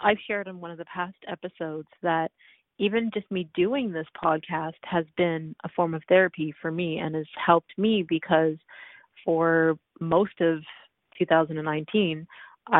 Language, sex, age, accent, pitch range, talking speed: English, female, 30-49, American, 160-185 Hz, 150 wpm